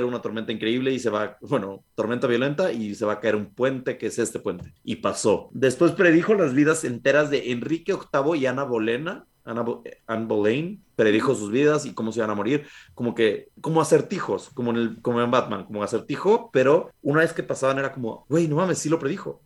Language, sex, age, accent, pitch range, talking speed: Spanish, male, 30-49, Mexican, 115-155 Hz, 215 wpm